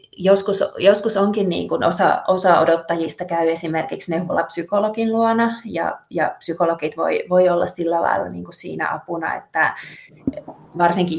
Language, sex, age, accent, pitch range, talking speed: Finnish, female, 20-39, native, 165-190 Hz, 145 wpm